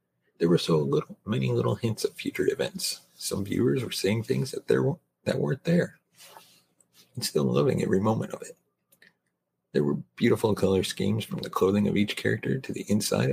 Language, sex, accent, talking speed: English, male, American, 185 wpm